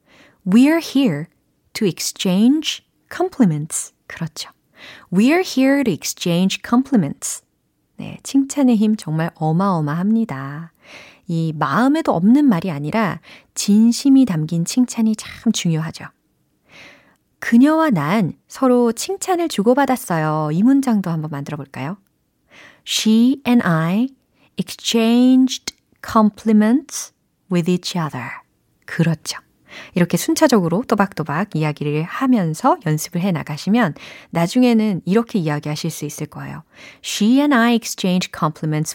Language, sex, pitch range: Korean, female, 165-255 Hz